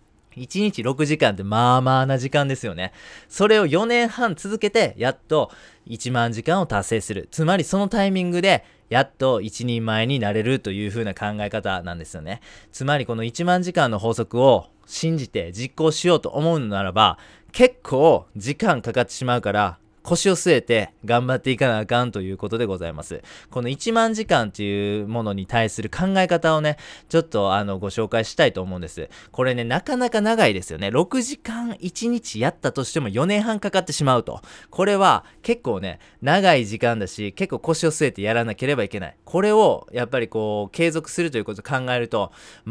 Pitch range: 110-175 Hz